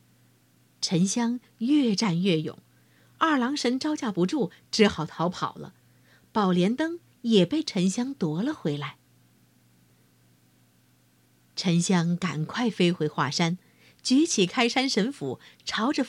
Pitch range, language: 145-230 Hz, Chinese